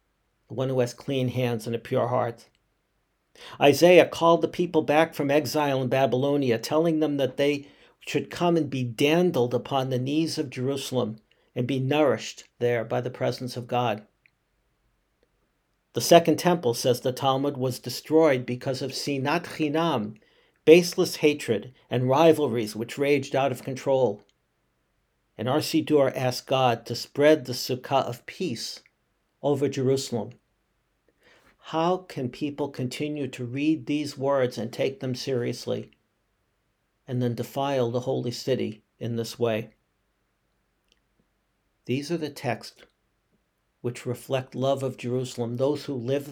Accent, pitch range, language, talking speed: American, 120-145 Hz, English, 140 wpm